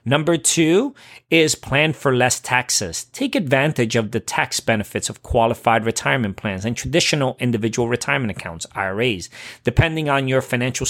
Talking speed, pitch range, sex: 150 wpm, 110-140 Hz, male